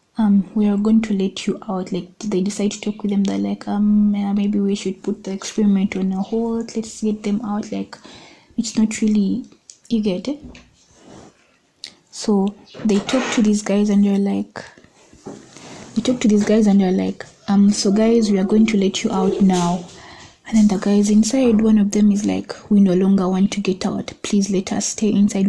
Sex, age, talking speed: female, 20-39, 205 wpm